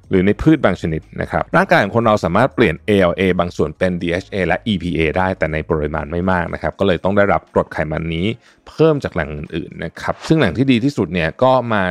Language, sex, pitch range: Thai, male, 80-105 Hz